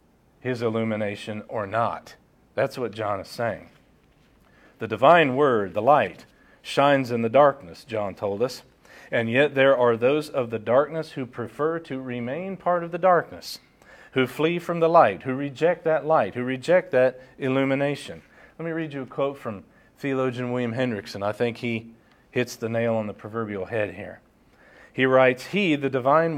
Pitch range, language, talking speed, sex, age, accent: 130-180 Hz, English, 175 wpm, male, 40-59, American